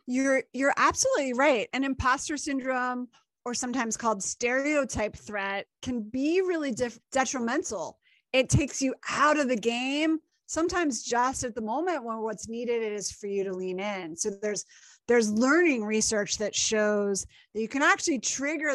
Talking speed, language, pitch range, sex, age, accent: 155 wpm, English, 215-280 Hz, female, 30-49, American